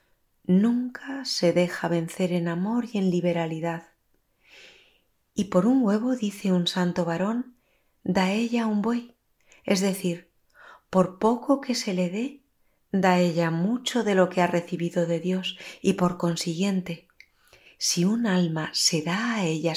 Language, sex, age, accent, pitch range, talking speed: Spanish, female, 30-49, Spanish, 180-220 Hz, 150 wpm